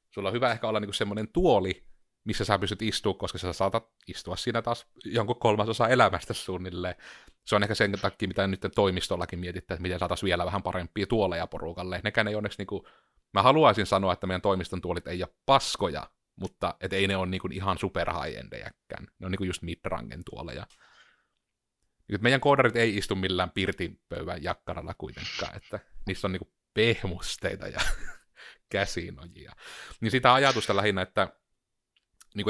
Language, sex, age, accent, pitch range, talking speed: Finnish, male, 30-49, native, 95-110 Hz, 165 wpm